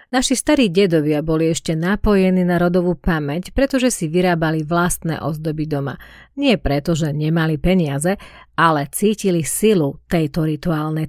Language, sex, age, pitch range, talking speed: Slovak, female, 40-59, 160-200 Hz, 135 wpm